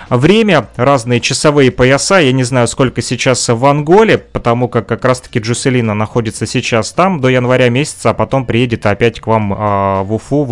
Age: 30-49